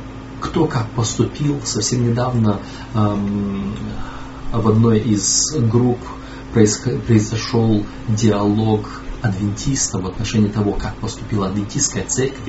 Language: Russian